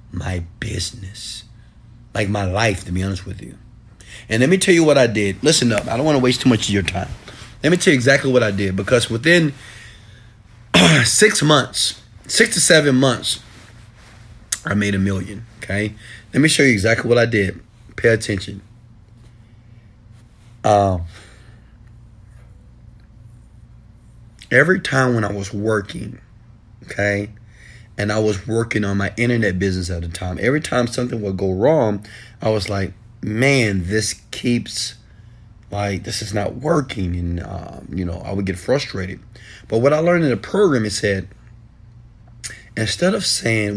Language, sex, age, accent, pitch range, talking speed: English, male, 30-49, American, 105-125 Hz, 165 wpm